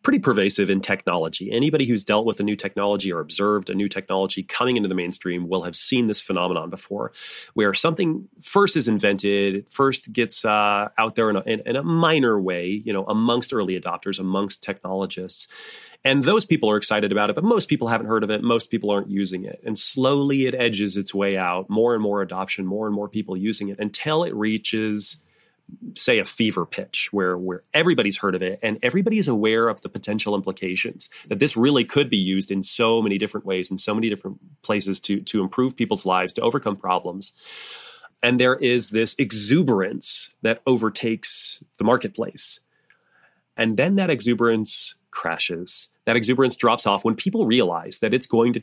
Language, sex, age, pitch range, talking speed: English, male, 30-49, 100-120 Hz, 190 wpm